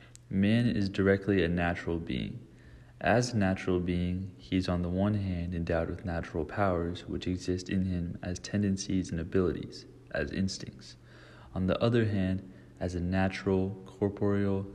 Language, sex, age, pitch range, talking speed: English, male, 30-49, 90-100 Hz, 155 wpm